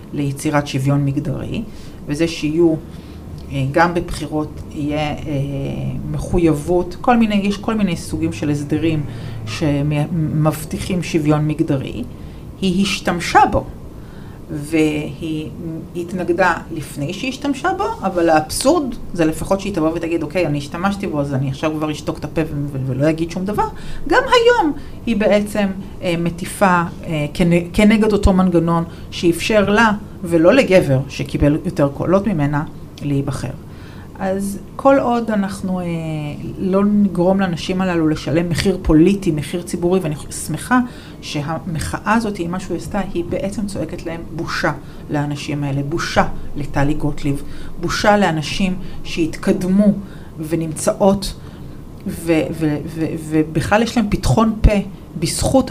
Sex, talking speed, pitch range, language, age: female, 130 wpm, 150-195 Hz, Hebrew, 40-59